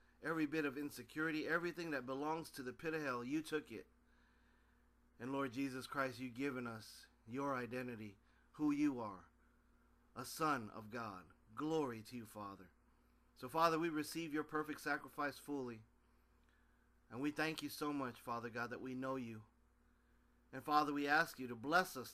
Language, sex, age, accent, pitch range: Japanese, male, 40-59, American, 105-155 Hz